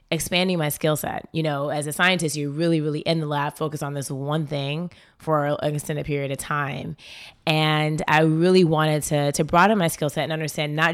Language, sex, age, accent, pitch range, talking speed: English, female, 20-39, American, 140-160 Hz, 215 wpm